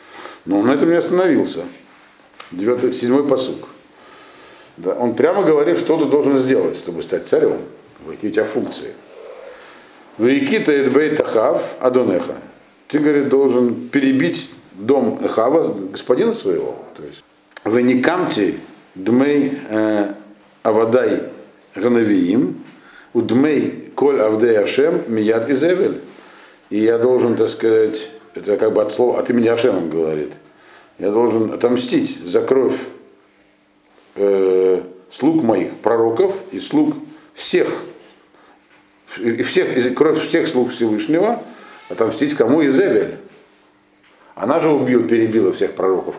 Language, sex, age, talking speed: Russian, male, 50-69, 115 wpm